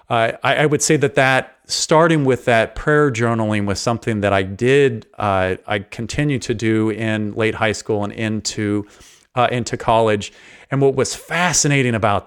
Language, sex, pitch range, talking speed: English, male, 110-140 Hz, 175 wpm